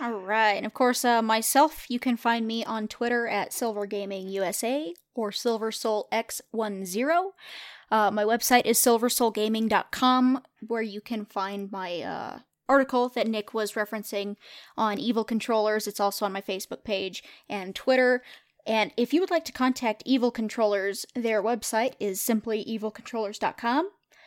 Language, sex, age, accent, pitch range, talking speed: English, female, 20-39, American, 210-250 Hz, 145 wpm